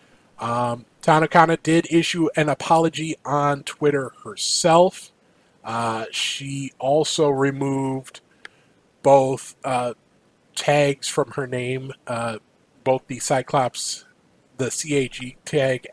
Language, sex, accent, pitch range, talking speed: English, male, American, 130-160 Hz, 100 wpm